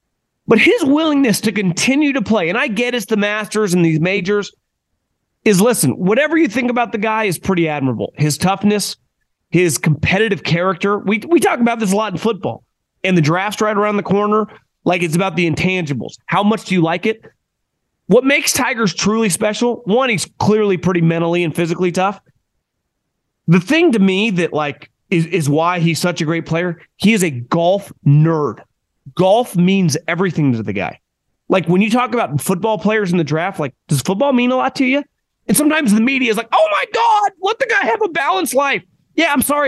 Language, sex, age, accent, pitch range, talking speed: English, male, 30-49, American, 170-240 Hz, 205 wpm